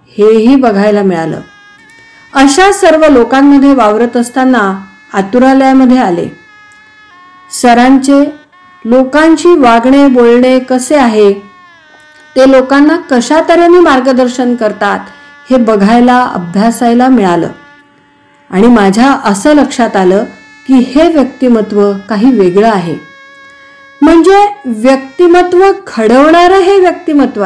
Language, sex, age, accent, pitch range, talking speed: Marathi, female, 50-69, native, 235-325 Hz, 90 wpm